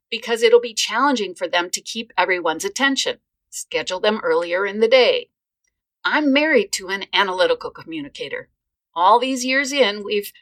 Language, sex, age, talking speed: English, female, 50-69, 155 wpm